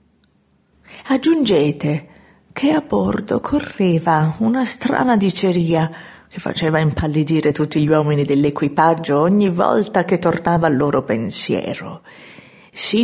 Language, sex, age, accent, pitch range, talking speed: Italian, female, 40-59, native, 165-230 Hz, 105 wpm